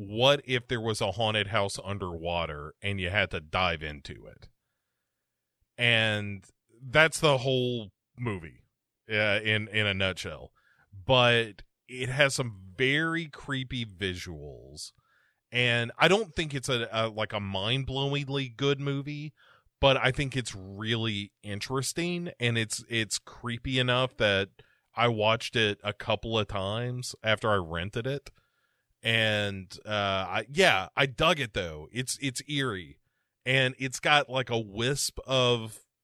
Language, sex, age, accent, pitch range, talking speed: English, male, 30-49, American, 105-130 Hz, 140 wpm